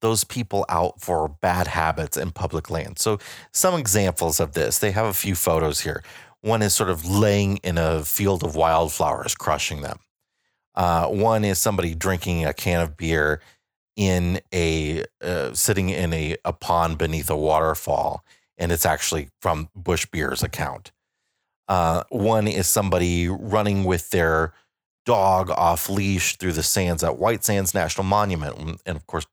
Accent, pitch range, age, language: American, 80-105 Hz, 30-49, English